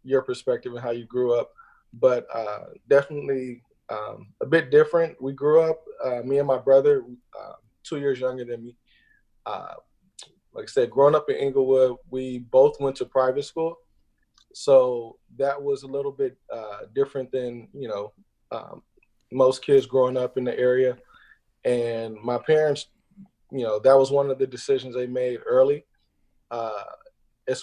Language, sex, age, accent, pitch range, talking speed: English, male, 20-39, American, 125-170 Hz, 165 wpm